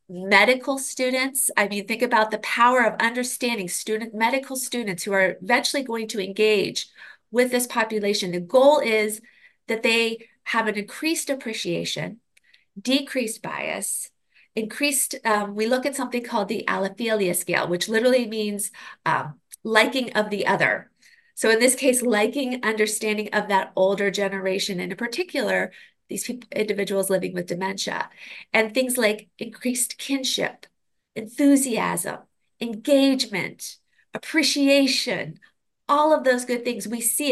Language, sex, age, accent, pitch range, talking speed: English, female, 30-49, American, 210-260 Hz, 135 wpm